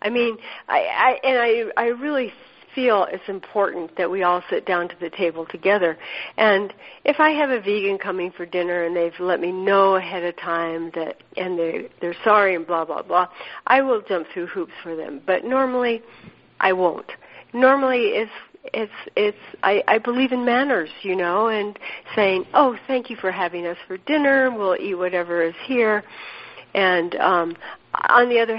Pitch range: 175-245 Hz